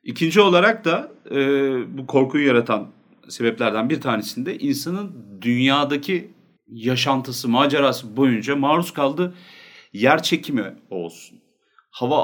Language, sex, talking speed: Turkish, male, 105 wpm